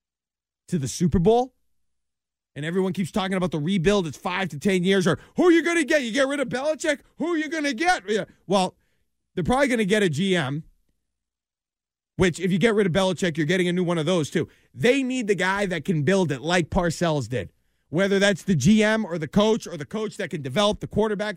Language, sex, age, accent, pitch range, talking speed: English, male, 30-49, American, 150-210 Hz, 235 wpm